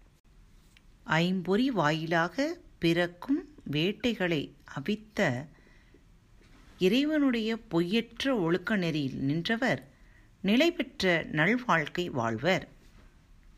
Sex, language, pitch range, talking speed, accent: female, Tamil, 135-220 Hz, 55 wpm, native